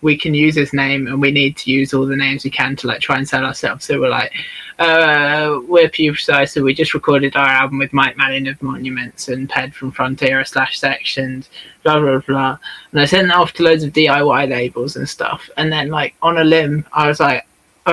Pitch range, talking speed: 135-155 Hz, 230 wpm